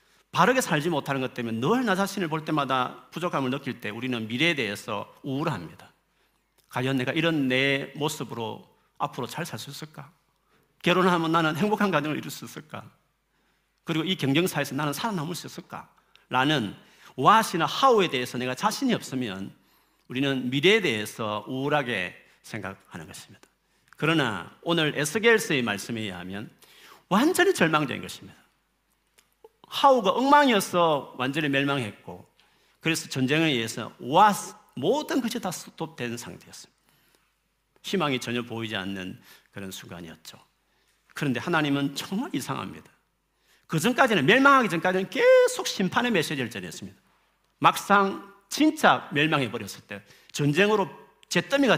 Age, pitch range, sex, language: 40-59, 125-190 Hz, male, Korean